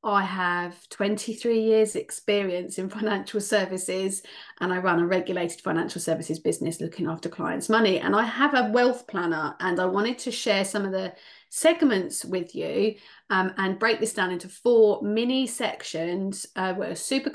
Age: 40-59